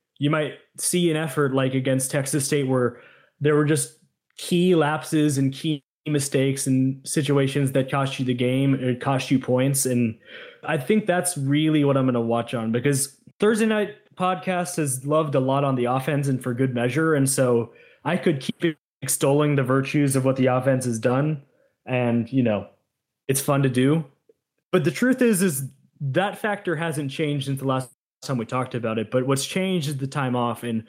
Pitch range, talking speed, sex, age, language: 130-155 Hz, 195 wpm, male, 20-39, English